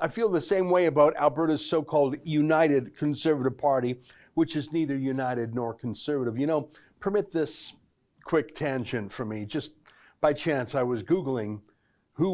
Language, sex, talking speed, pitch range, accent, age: English, male, 155 wpm, 135-170 Hz, American, 50-69